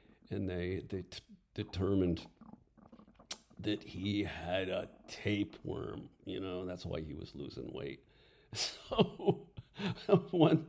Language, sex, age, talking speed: English, male, 50-69, 110 wpm